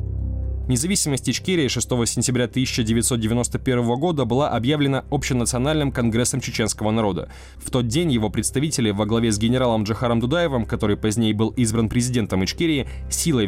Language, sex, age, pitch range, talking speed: Russian, male, 20-39, 110-130 Hz, 135 wpm